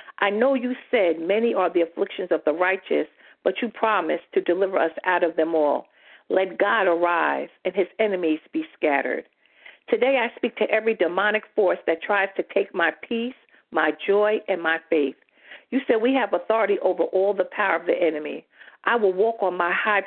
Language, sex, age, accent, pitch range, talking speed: English, female, 50-69, American, 165-230 Hz, 195 wpm